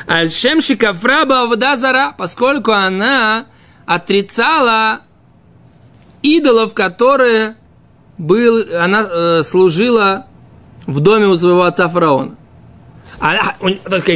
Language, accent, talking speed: Russian, native, 85 wpm